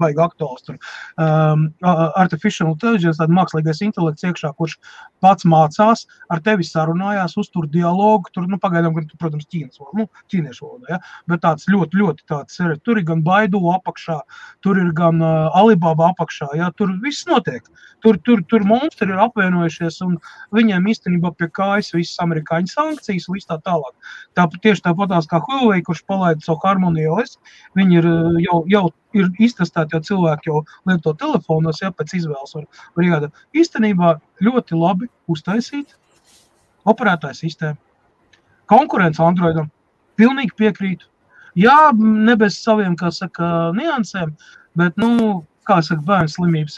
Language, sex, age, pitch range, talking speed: English, male, 30-49, 165-210 Hz, 155 wpm